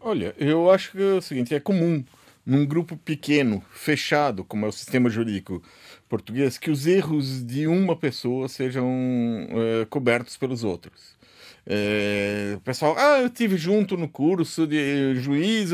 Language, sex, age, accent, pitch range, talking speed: Portuguese, male, 50-69, Brazilian, 110-160 Hz, 155 wpm